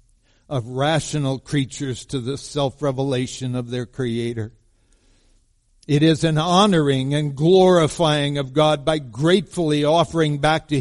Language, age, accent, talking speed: English, 60-79, American, 120 wpm